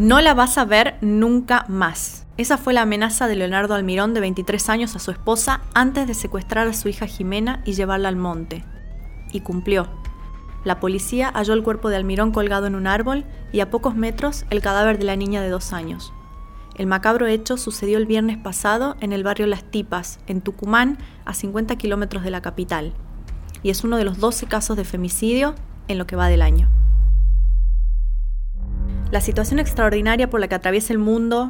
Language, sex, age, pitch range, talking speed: Spanish, female, 20-39, 185-225 Hz, 190 wpm